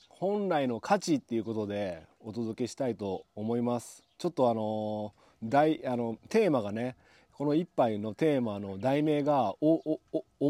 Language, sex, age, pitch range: Japanese, male, 40-59, 105-155 Hz